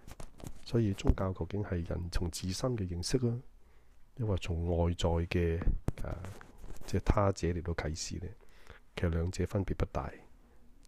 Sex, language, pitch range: male, Chinese, 80-95 Hz